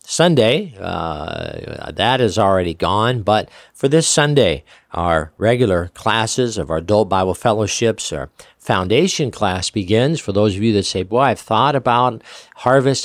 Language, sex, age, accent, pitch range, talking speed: English, male, 50-69, American, 100-125 Hz, 150 wpm